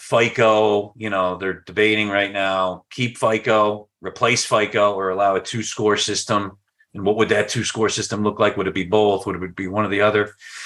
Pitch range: 95-115 Hz